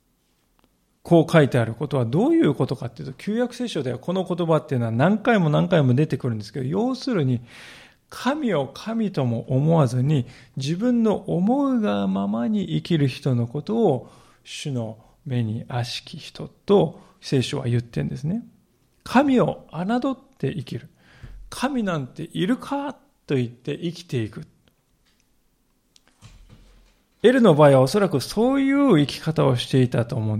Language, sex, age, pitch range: Japanese, male, 40-59, 130-175 Hz